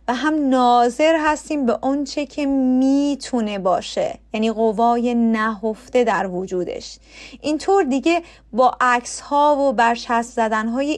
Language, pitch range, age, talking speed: Persian, 230-290 Hz, 30-49, 120 wpm